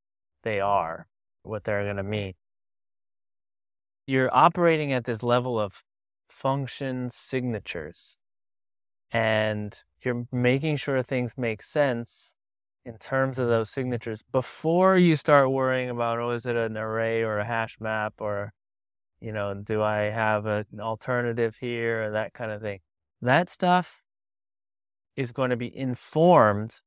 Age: 20-39